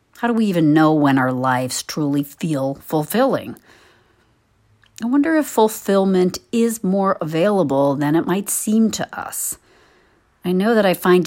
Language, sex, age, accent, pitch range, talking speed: English, female, 50-69, American, 140-190 Hz, 155 wpm